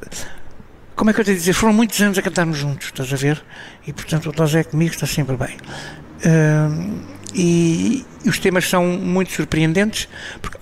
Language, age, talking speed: Portuguese, 60-79, 180 wpm